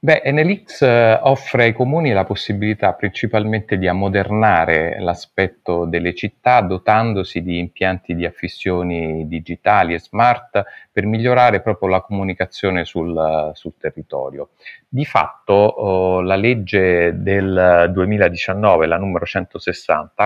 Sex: male